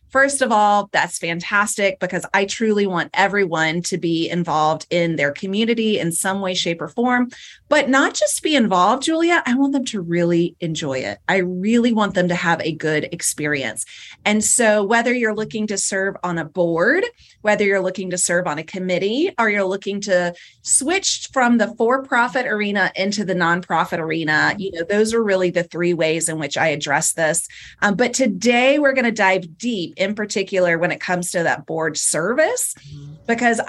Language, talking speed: English, 190 wpm